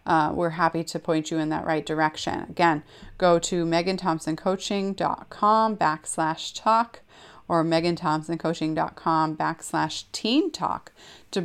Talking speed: 115 wpm